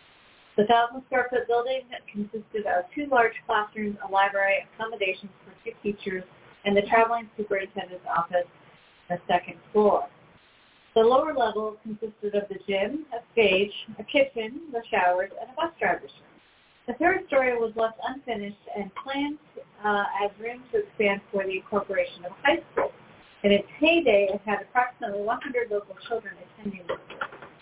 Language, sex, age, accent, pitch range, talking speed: English, female, 30-49, American, 195-250 Hz, 160 wpm